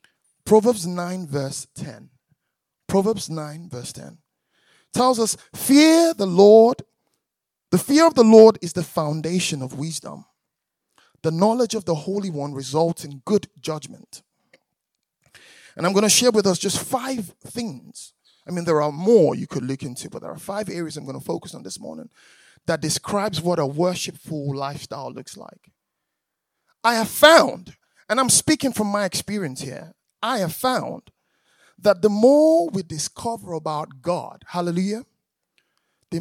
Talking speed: 155 wpm